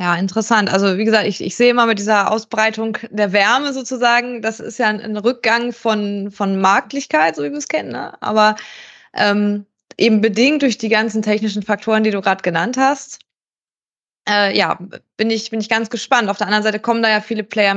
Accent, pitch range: German, 205-230 Hz